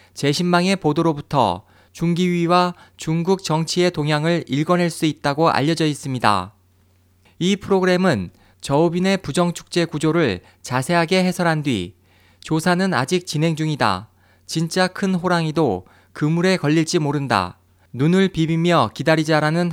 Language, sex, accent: Korean, male, native